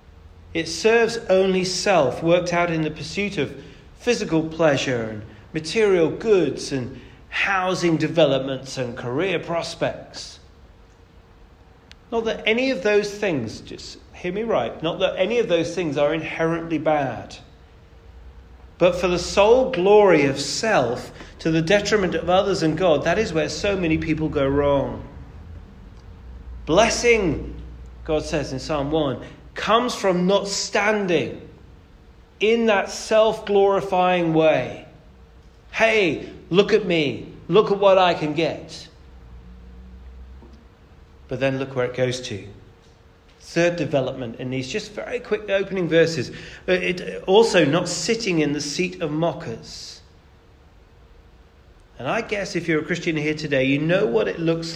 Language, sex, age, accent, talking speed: English, male, 40-59, British, 135 wpm